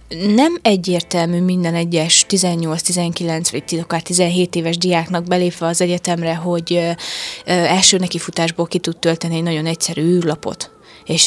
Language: Hungarian